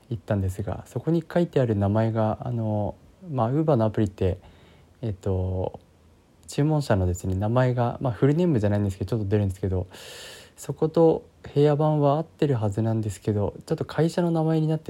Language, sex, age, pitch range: Japanese, male, 20-39, 100-130 Hz